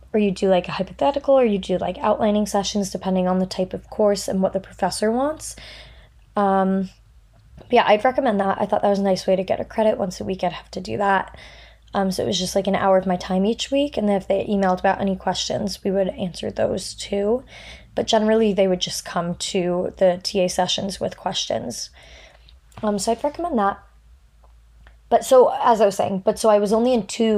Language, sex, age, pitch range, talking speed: English, female, 20-39, 185-210 Hz, 225 wpm